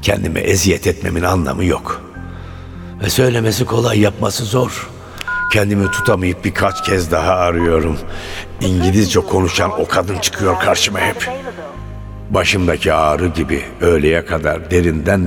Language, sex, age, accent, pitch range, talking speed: Turkish, male, 60-79, native, 85-105 Hz, 115 wpm